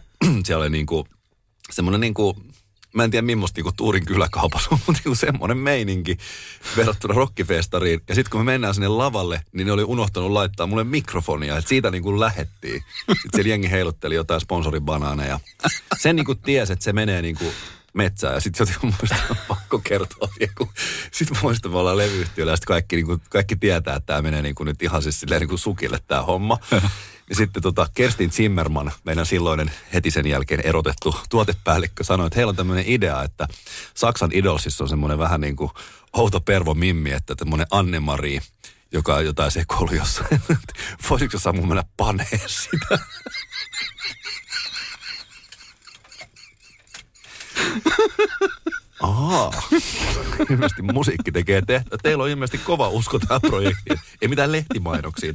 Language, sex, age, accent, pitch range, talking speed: Finnish, male, 30-49, native, 80-115 Hz, 145 wpm